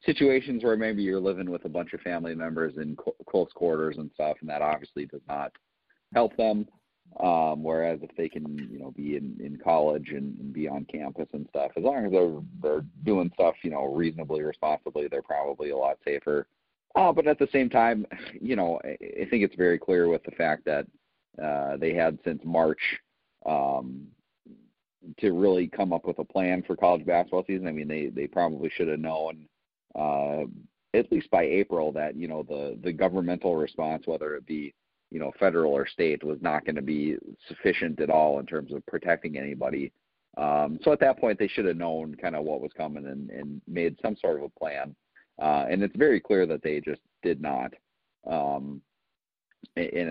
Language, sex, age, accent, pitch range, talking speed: English, male, 40-59, American, 75-90 Hz, 200 wpm